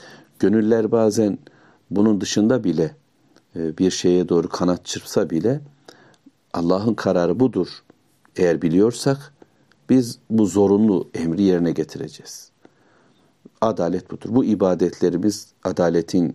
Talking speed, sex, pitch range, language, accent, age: 100 wpm, male, 90-110 Hz, Turkish, native, 60-79